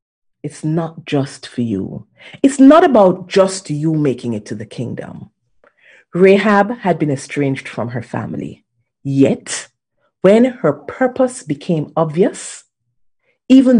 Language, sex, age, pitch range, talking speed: English, female, 40-59, 130-195 Hz, 125 wpm